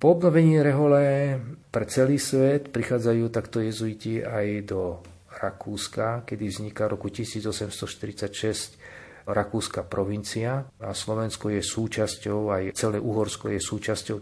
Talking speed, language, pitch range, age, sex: 120 wpm, Slovak, 100-115 Hz, 40-59, male